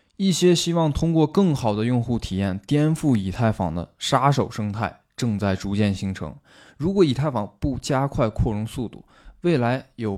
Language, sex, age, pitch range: Chinese, male, 20-39, 105-140 Hz